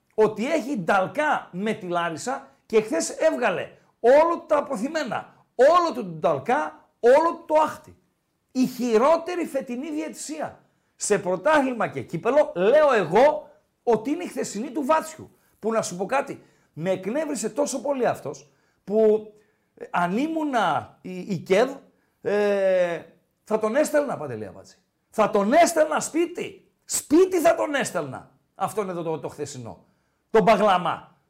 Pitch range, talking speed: 200-305 Hz, 140 wpm